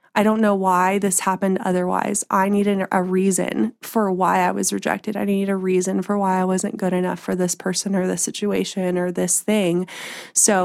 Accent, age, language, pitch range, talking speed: American, 20-39, English, 190-220 Hz, 205 wpm